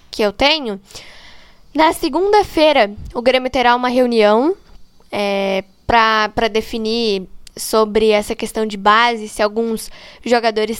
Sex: female